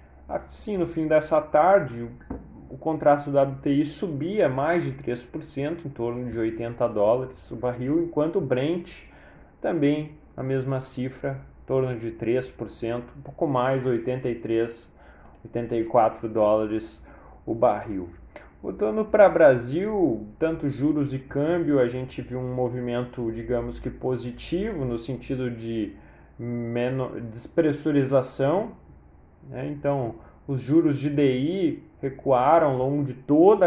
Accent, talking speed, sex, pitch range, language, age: Brazilian, 120 wpm, male, 120-150 Hz, Portuguese, 20-39